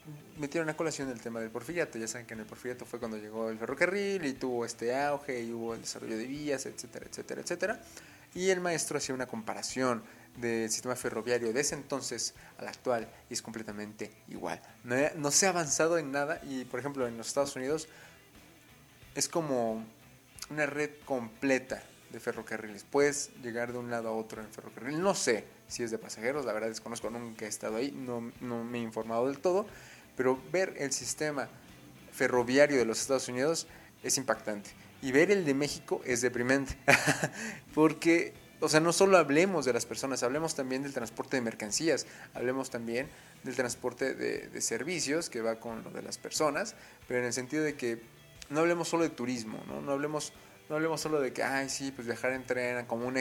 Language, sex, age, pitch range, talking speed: Spanish, male, 20-39, 115-150 Hz, 195 wpm